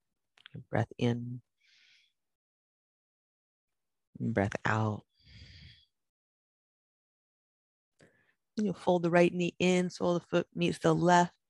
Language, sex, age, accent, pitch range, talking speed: English, female, 40-59, American, 120-165 Hz, 95 wpm